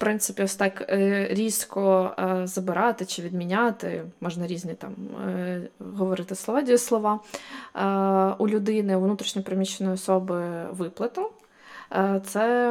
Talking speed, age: 105 wpm, 20-39